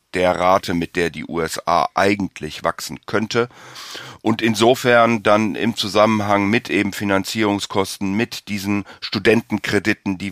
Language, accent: German, German